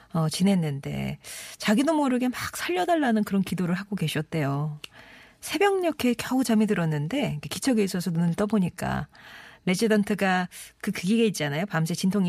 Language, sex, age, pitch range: Korean, female, 40-59, 165-220 Hz